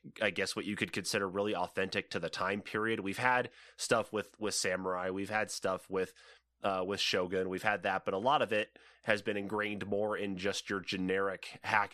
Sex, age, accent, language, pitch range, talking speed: male, 30-49, American, English, 90-105 Hz, 210 wpm